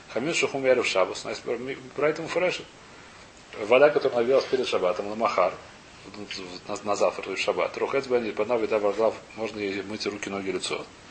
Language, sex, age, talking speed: Russian, male, 40-59, 125 wpm